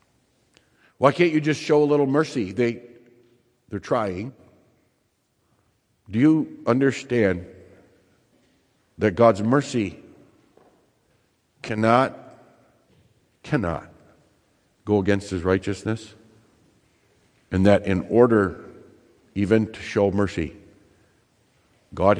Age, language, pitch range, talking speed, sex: 60-79, English, 90-110 Hz, 85 wpm, male